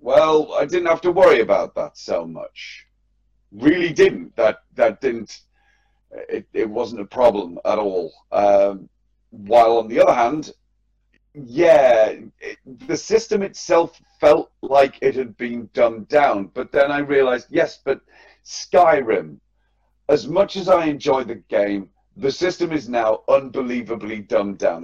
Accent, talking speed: British, 145 wpm